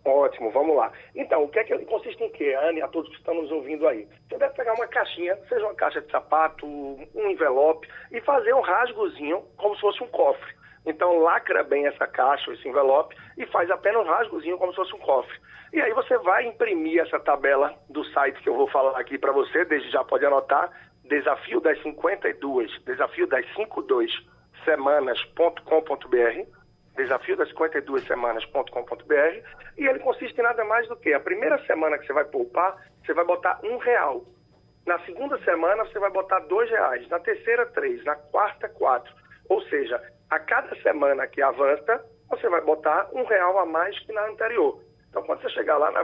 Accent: Brazilian